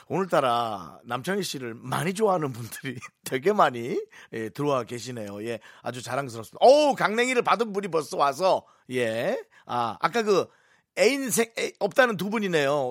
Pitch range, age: 125-210 Hz, 40-59